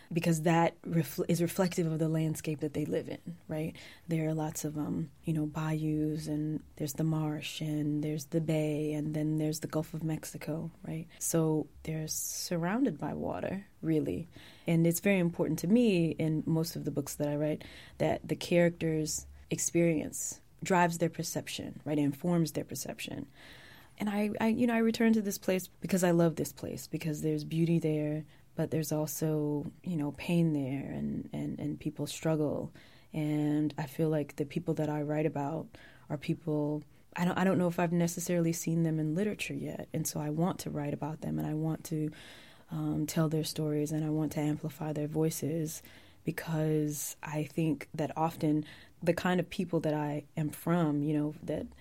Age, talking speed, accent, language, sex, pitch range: 20-39, 190 wpm, American, English, female, 150-165 Hz